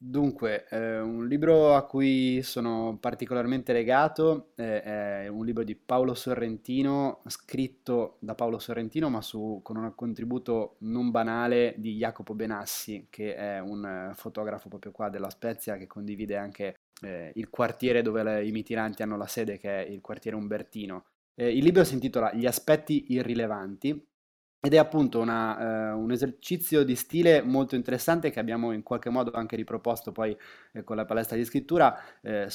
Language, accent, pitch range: Italian, native, 110-130 Hz